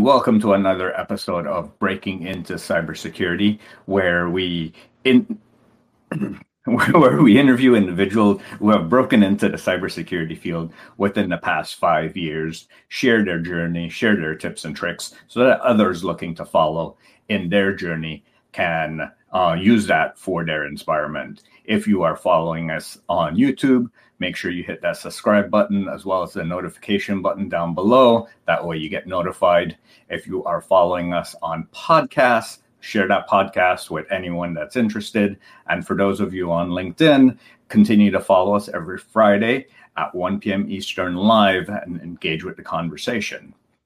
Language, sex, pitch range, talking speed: English, male, 85-110 Hz, 155 wpm